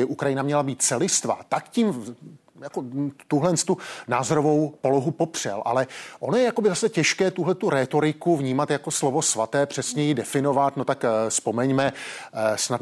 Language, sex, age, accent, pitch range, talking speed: Czech, male, 30-49, native, 130-155 Hz, 150 wpm